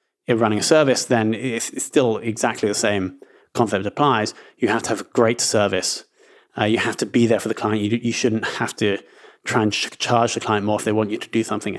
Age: 30-49